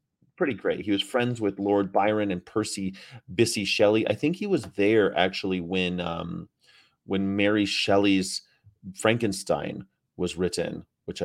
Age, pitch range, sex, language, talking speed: 30-49, 95-115 Hz, male, English, 145 wpm